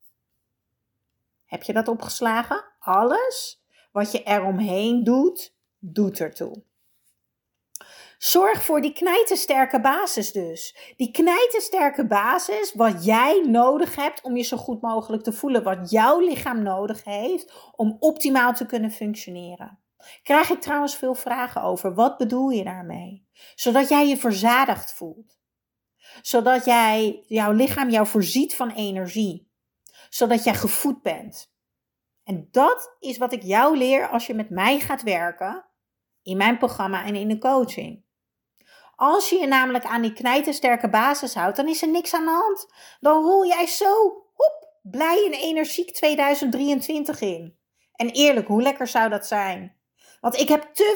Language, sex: Dutch, female